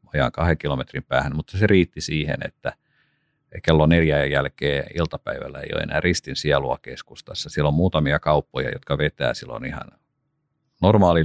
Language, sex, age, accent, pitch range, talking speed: Finnish, male, 50-69, native, 75-95 Hz, 150 wpm